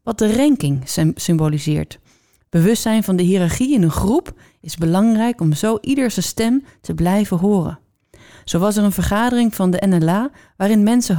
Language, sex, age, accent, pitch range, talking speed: Dutch, female, 30-49, Dutch, 170-230 Hz, 160 wpm